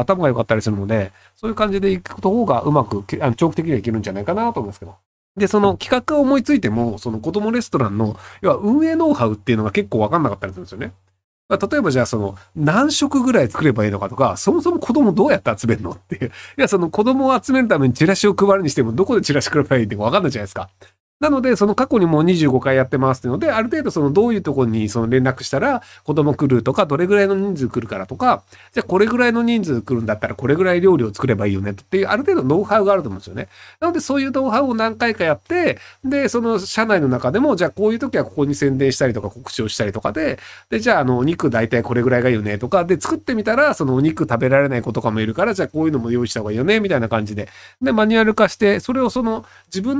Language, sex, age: Japanese, male, 40-59